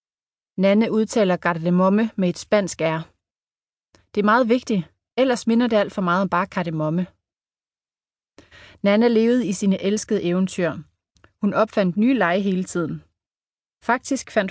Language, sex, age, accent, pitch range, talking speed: Danish, female, 30-49, native, 175-225 Hz, 140 wpm